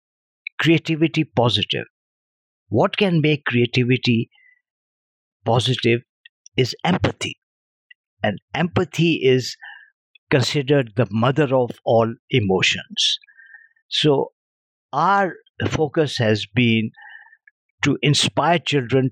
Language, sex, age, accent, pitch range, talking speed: English, male, 50-69, Indian, 115-165 Hz, 80 wpm